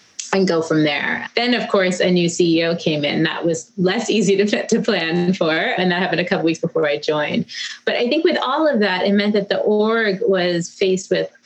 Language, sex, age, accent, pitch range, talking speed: English, female, 30-49, American, 160-205 Hz, 230 wpm